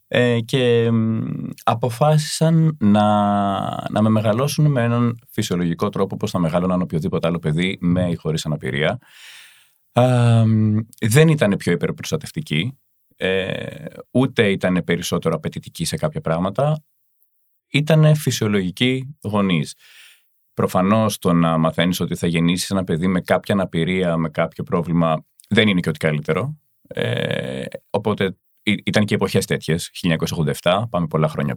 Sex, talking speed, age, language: male, 125 wpm, 30-49, Greek